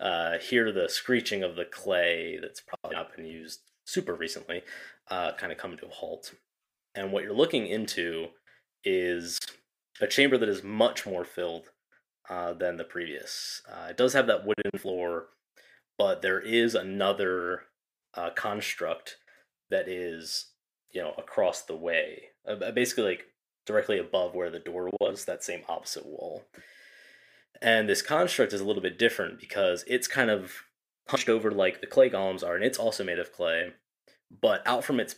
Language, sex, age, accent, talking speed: English, male, 20-39, American, 170 wpm